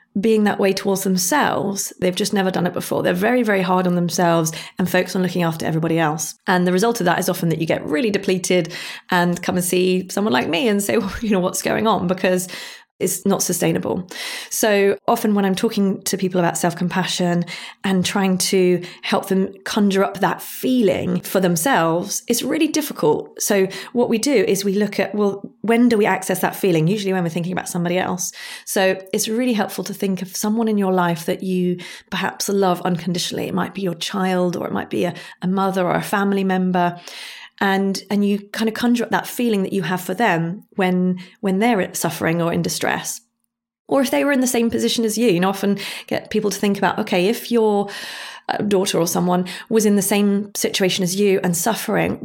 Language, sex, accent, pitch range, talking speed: English, female, British, 180-210 Hz, 215 wpm